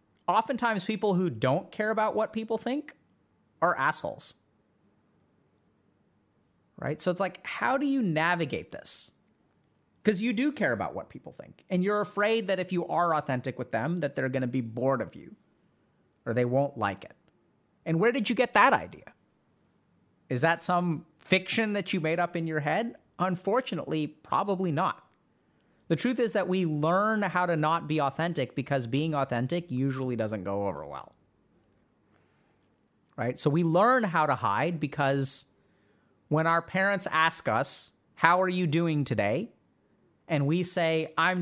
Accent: American